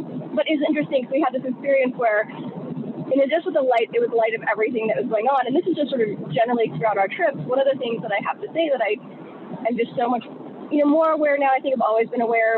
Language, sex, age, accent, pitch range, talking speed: English, female, 20-39, American, 210-255 Hz, 290 wpm